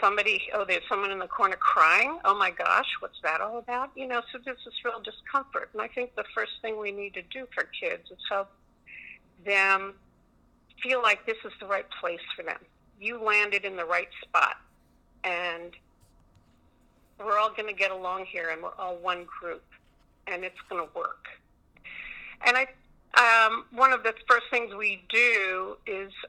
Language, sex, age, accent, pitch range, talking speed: English, female, 50-69, American, 185-235 Hz, 185 wpm